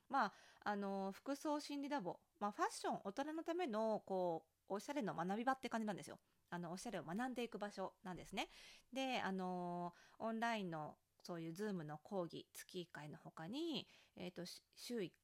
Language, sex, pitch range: Japanese, female, 170-240 Hz